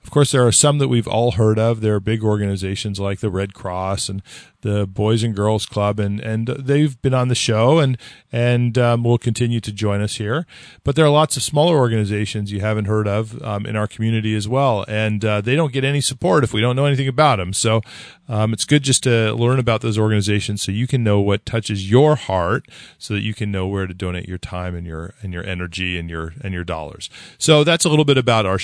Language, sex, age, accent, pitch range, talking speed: English, male, 40-59, American, 100-125 Hz, 245 wpm